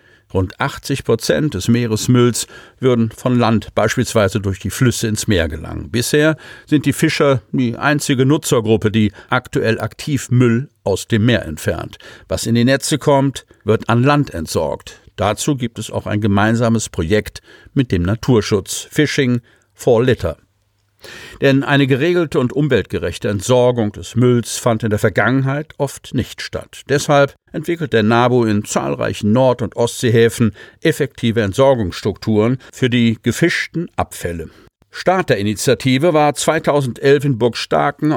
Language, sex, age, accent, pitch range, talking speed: German, male, 50-69, German, 105-140 Hz, 140 wpm